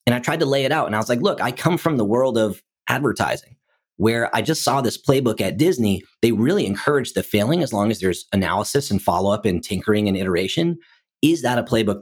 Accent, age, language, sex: American, 30-49, English, male